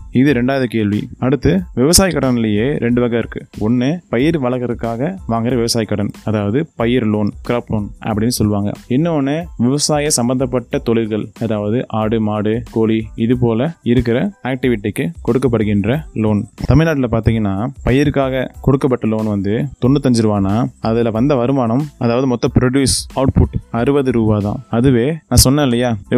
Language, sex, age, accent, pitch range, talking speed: English, male, 20-39, Indian, 115-135 Hz, 135 wpm